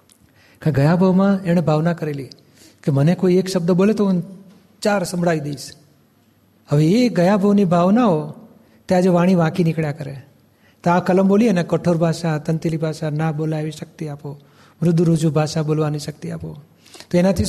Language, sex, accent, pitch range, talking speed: Gujarati, male, native, 155-195 Hz, 165 wpm